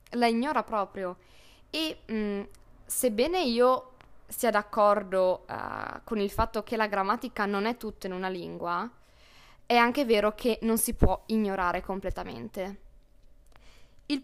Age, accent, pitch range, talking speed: 20-39, native, 190-235 Hz, 125 wpm